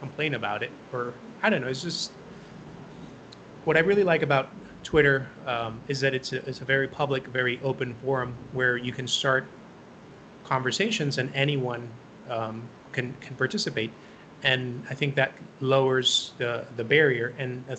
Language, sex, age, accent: English, male, 30-49, American